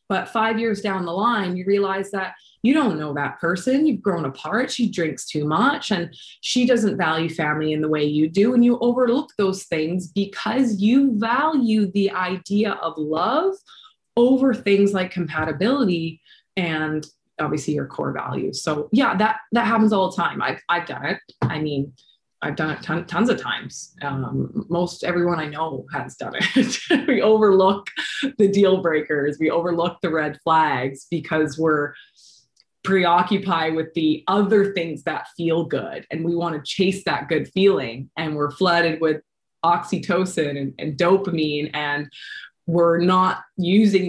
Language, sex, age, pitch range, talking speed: English, female, 20-39, 155-205 Hz, 165 wpm